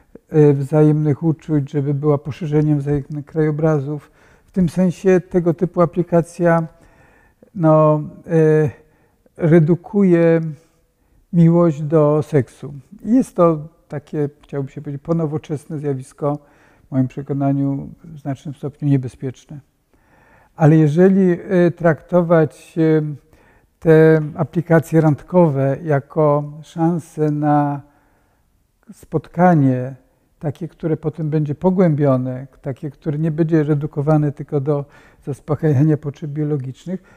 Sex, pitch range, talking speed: male, 145-165 Hz, 90 wpm